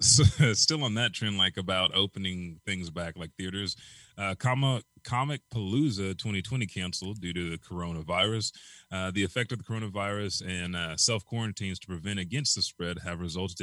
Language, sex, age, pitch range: English, male, 30-49, 85-110 Hz